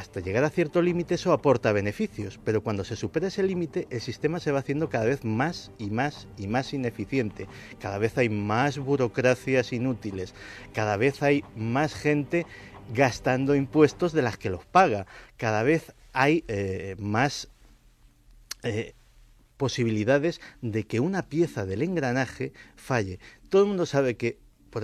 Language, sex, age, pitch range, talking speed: Spanish, male, 50-69, 105-145 Hz, 155 wpm